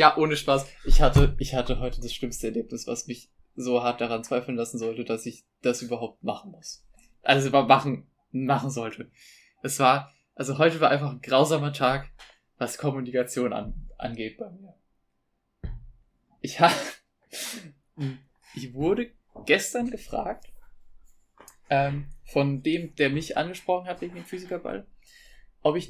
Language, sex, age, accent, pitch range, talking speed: German, male, 20-39, German, 120-165 Hz, 145 wpm